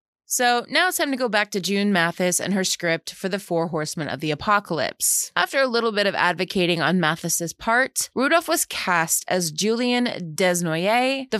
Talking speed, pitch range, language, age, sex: 190 wpm, 170-235 Hz, English, 20-39, female